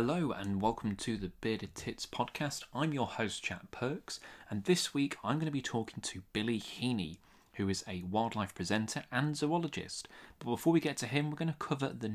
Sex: male